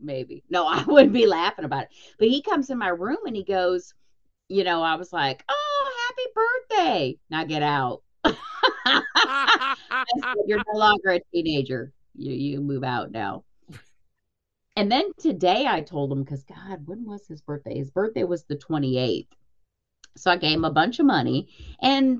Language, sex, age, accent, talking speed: English, female, 40-59, American, 175 wpm